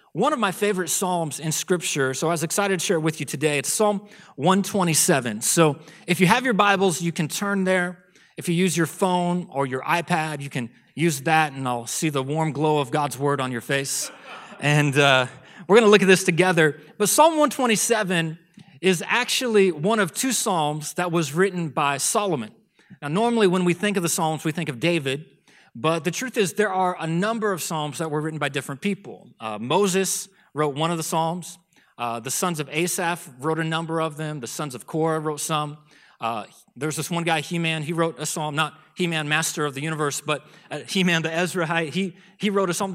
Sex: male